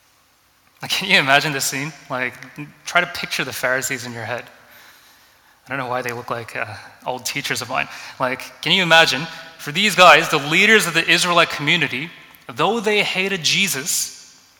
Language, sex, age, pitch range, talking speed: English, male, 20-39, 130-175 Hz, 175 wpm